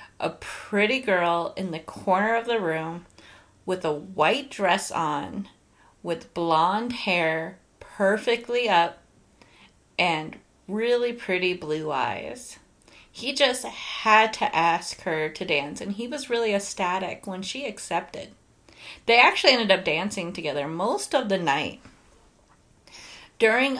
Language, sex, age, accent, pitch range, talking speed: English, female, 30-49, American, 185-245 Hz, 130 wpm